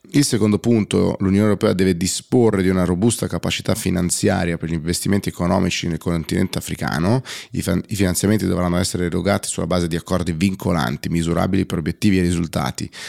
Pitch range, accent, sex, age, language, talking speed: 85-105 Hz, native, male, 30-49, Italian, 155 wpm